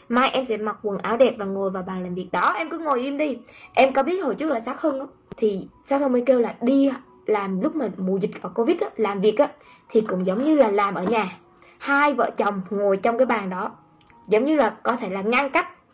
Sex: female